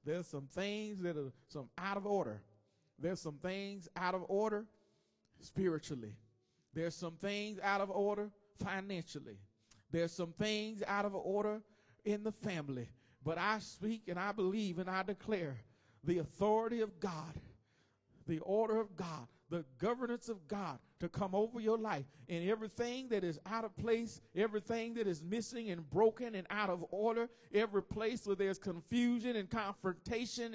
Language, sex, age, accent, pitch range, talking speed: English, male, 40-59, American, 185-245 Hz, 160 wpm